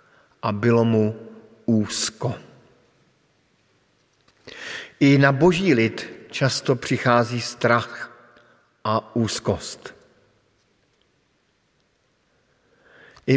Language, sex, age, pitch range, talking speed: Slovak, male, 50-69, 110-130 Hz, 65 wpm